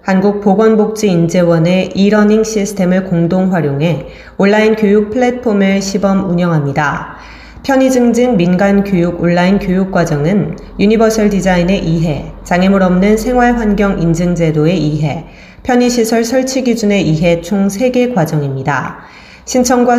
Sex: female